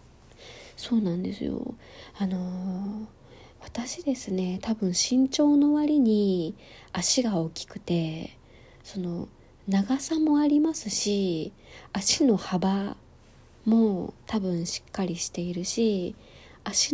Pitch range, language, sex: 185-235 Hz, Japanese, female